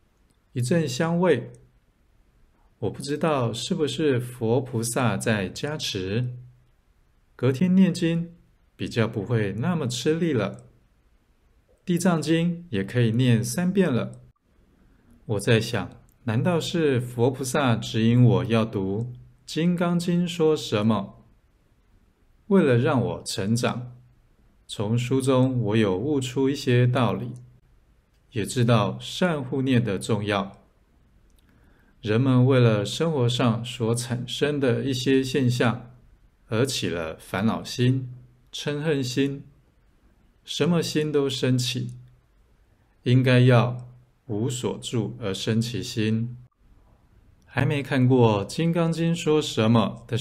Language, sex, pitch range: Chinese, male, 115-140 Hz